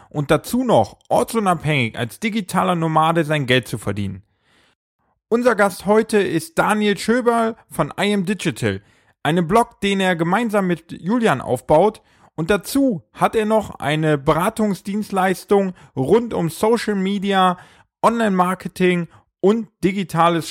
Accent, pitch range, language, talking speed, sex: German, 150-200 Hz, German, 125 wpm, male